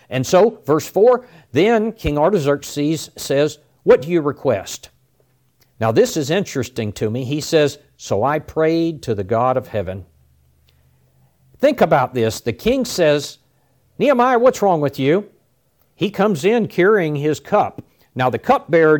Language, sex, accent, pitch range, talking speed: English, male, American, 125-170 Hz, 150 wpm